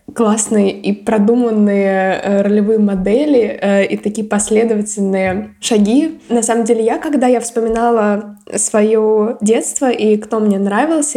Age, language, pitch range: 20-39, Russian, 205-235 Hz